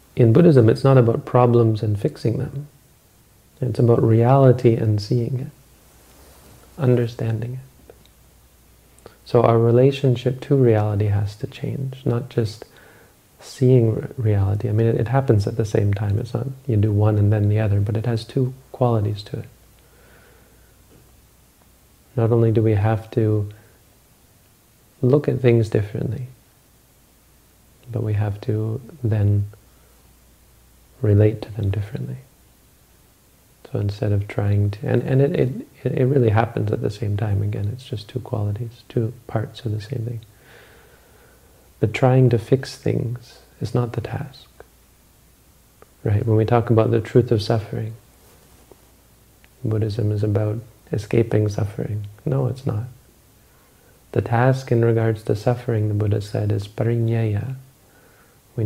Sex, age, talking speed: male, 40-59, 140 wpm